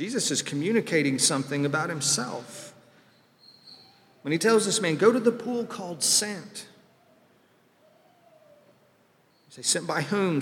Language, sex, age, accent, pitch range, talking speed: English, male, 40-59, American, 145-215 Hz, 125 wpm